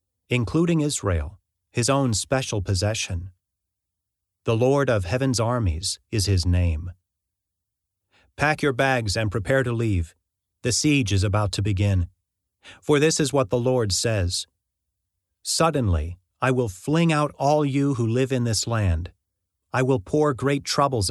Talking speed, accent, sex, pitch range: 145 wpm, American, male, 95-130 Hz